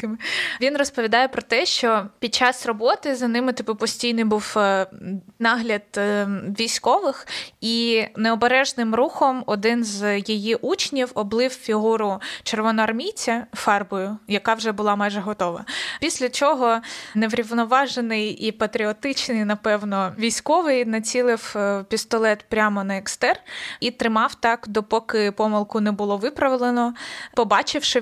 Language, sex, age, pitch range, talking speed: Ukrainian, female, 20-39, 210-250 Hz, 110 wpm